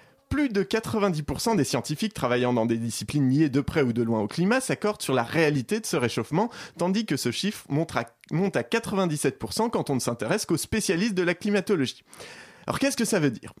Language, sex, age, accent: French, male, 20-39, French